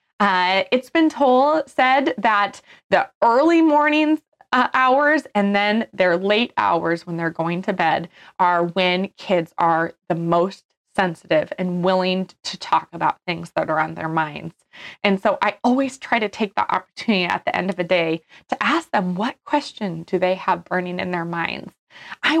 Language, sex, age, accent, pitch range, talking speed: English, female, 20-39, American, 180-270 Hz, 180 wpm